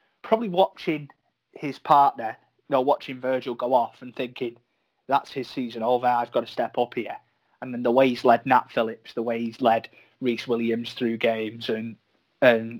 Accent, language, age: British, English, 20-39